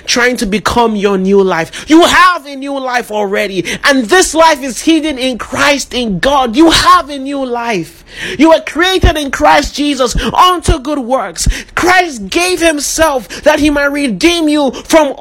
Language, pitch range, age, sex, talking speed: English, 220-285 Hz, 30-49, male, 175 wpm